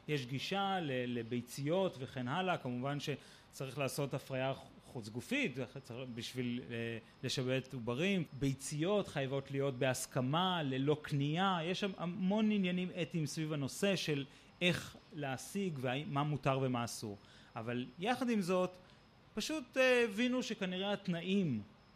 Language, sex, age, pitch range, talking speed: Hebrew, male, 30-49, 135-195 Hz, 110 wpm